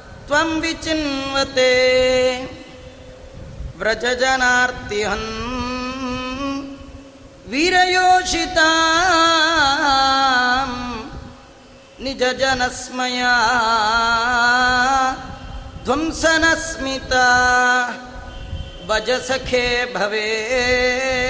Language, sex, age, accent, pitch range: Kannada, female, 30-49, native, 235-275 Hz